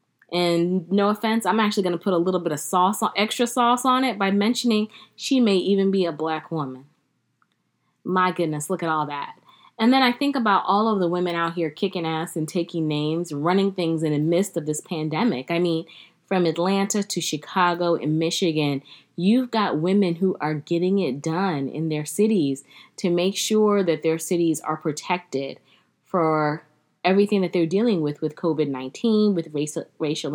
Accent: American